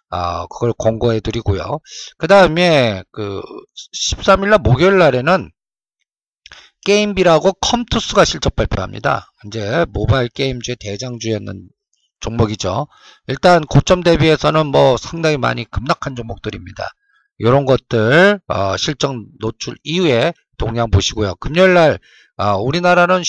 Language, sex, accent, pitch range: Korean, male, native, 115-165 Hz